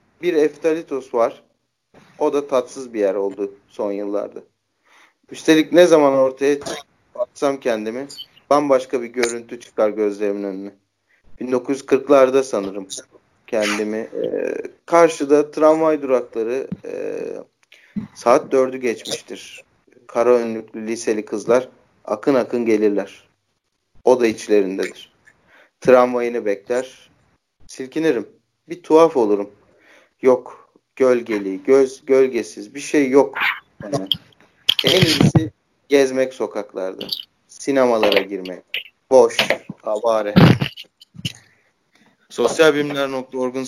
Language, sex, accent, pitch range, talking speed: Turkish, male, native, 105-140 Hz, 95 wpm